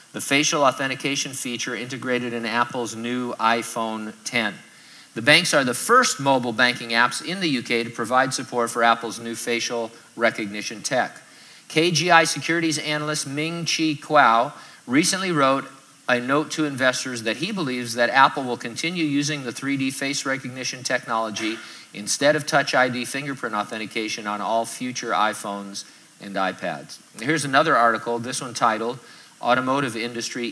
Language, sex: English, male